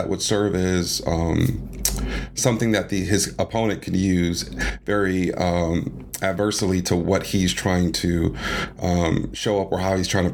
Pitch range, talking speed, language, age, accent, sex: 90-105 Hz, 155 wpm, English, 40-59, American, male